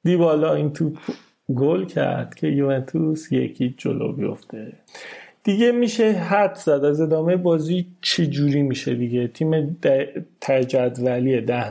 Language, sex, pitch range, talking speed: Persian, male, 135-180 Hz, 135 wpm